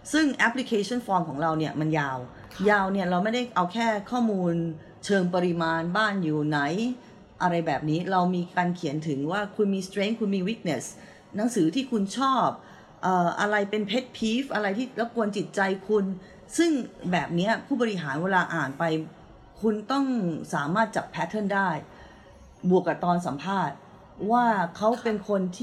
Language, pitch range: Thai, 170-220 Hz